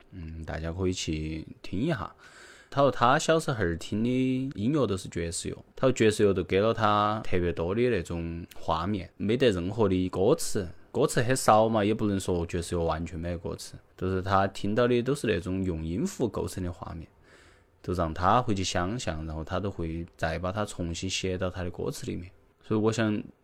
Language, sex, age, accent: Chinese, male, 20-39, native